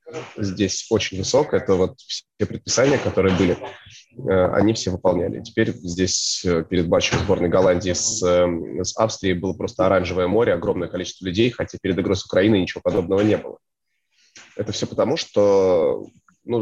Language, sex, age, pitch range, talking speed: Russian, male, 20-39, 95-125 Hz, 150 wpm